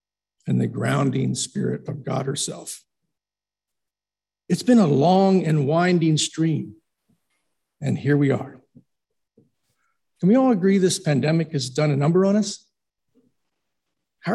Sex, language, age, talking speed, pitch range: male, English, 50-69, 130 wpm, 155-200 Hz